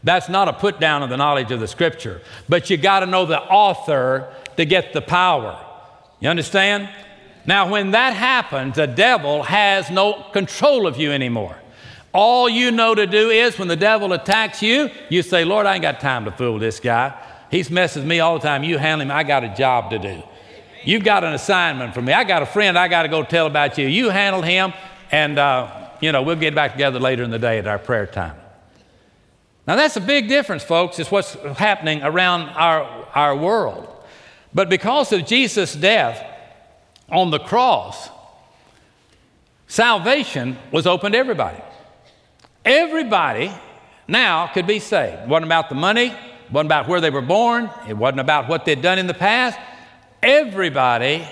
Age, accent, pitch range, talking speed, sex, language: 60-79, American, 135-200 Hz, 190 wpm, male, English